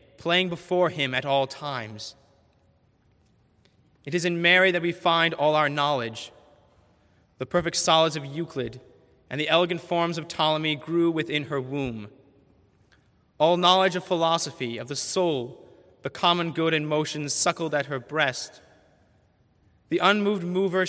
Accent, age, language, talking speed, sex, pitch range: American, 30-49, English, 145 wpm, male, 125-165 Hz